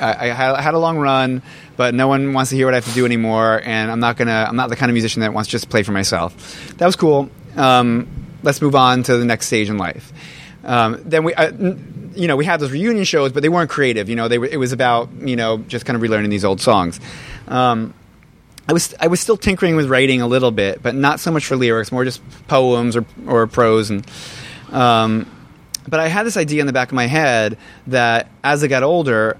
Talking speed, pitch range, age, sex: 245 wpm, 120-155 Hz, 30-49, male